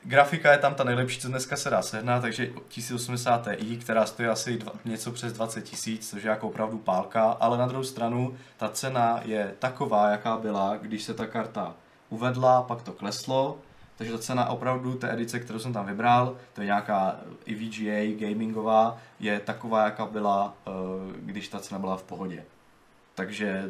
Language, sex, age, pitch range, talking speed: Czech, male, 20-39, 105-120 Hz, 175 wpm